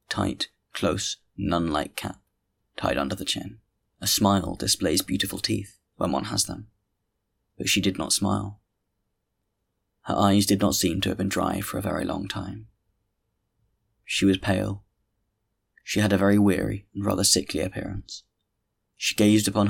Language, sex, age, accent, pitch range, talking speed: English, male, 20-39, British, 95-105 Hz, 155 wpm